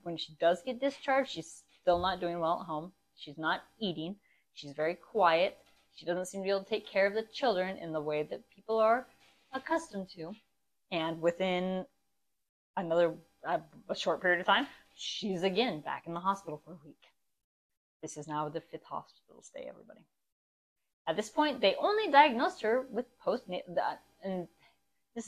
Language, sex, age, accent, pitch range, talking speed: English, female, 20-39, American, 160-220 Hz, 175 wpm